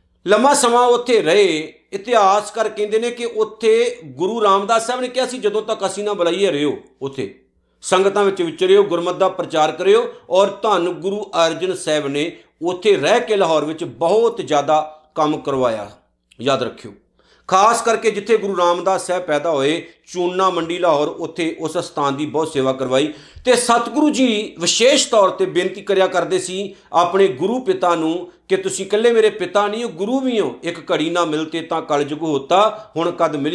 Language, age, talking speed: Punjabi, 50-69, 180 wpm